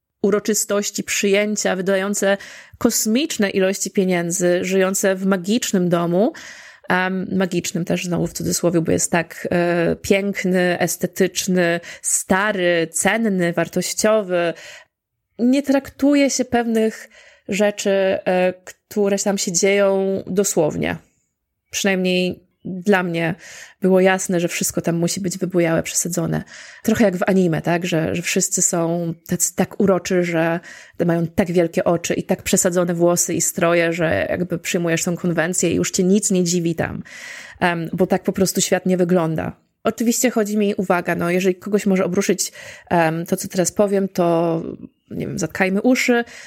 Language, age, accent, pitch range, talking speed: Polish, 20-39, native, 175-200 Hz, 140 wpm